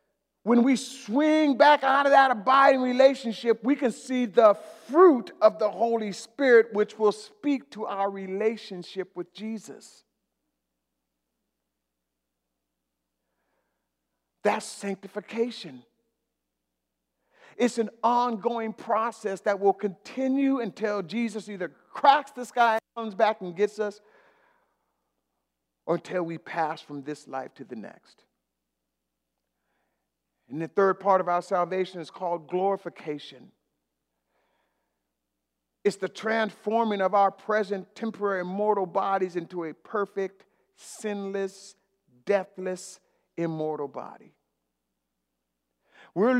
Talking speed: 105 wpm